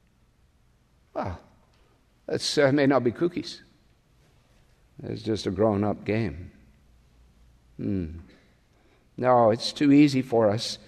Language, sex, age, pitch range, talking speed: English, male, 60-79, 105-135 Hz, 100 wpm